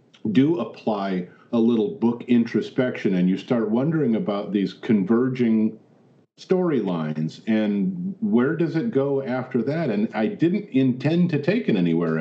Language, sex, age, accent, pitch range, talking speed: English, male, 50-69, American, 105-160 Hz, 145 wpm